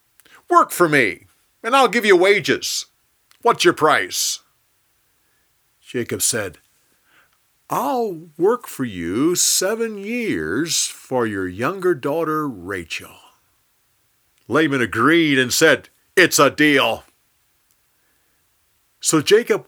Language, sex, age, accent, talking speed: English, male, 50-69, American, 100 wpm